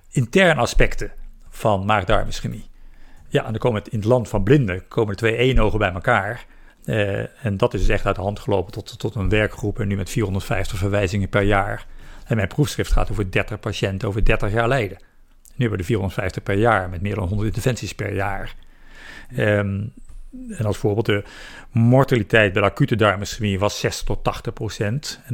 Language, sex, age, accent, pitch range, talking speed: Dutch, male, 50-69, Dutch, 100-120 Hz, 195 wpm